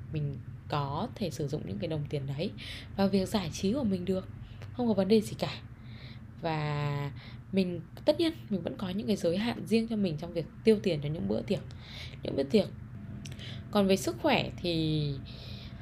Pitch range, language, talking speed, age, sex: 140-195 Hz, Vietnamese, 200 wpm, 10-29, female